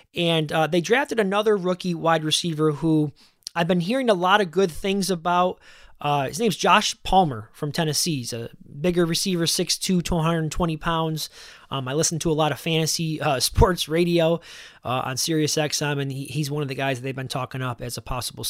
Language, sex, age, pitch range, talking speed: English, male, 20-39, 150-195 Hz, 200 wpm